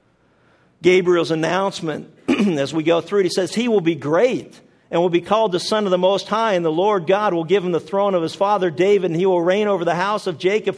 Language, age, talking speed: English, 50-69, 250 wpm